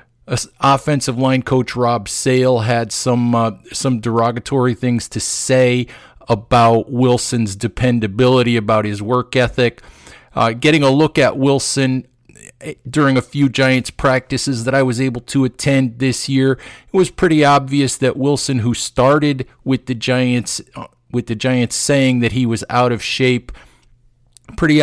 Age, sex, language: 50-69, male, English